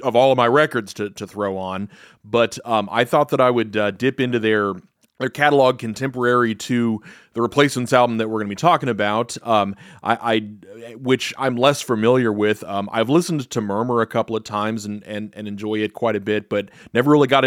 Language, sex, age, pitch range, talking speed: English, male, 30-49, 105-130 Hz, 215 wpm